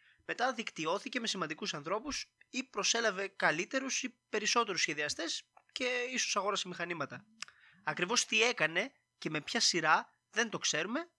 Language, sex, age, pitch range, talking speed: Greek, male, 20-39, 145-210 Hz, 135 wpm